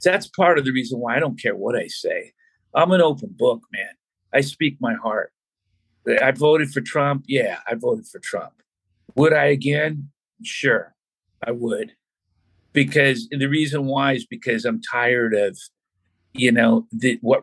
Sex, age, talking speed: male, 50-69, 170 wpm